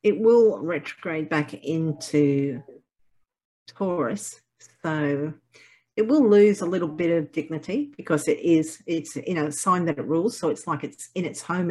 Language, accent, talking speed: English, Australian, 175 wpm